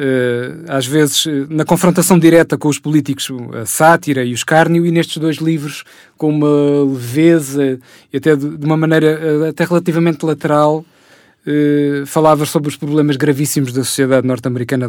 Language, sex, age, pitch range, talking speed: Portuguese, male, 20-39, 130-155 Hz, 145 wpm